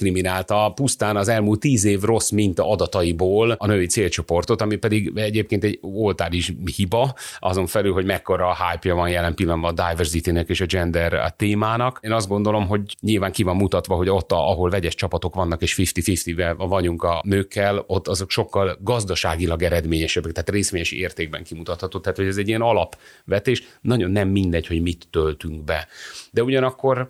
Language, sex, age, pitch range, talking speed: Hungarian, male, 30-49, 85-110 Hz, 165 wpm